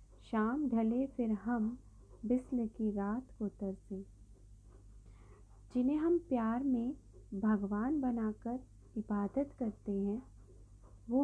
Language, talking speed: Hindi, 100 wpm